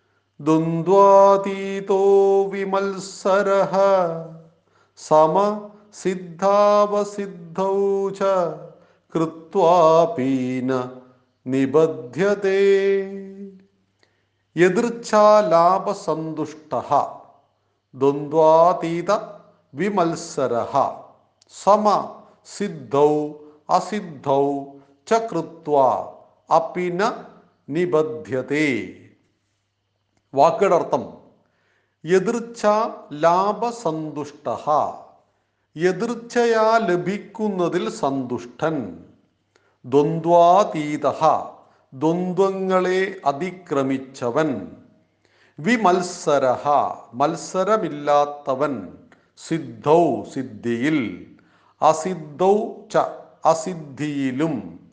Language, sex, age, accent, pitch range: Malayalam, male, 50-69, native, 145-195 Hz